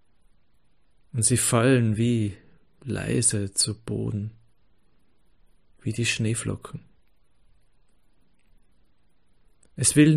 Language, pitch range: German, 105-120 Hz